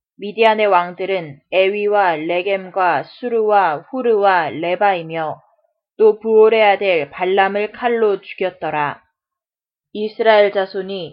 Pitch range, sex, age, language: 175-215 Hz, female, 20-39, Korean